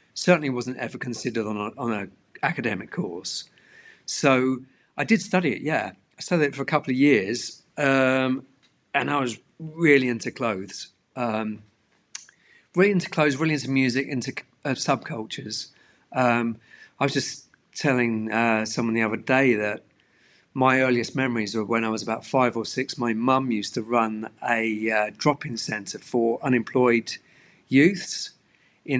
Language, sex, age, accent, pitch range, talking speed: English, male, 50-69, British, 115-135 Hz, 155 wpm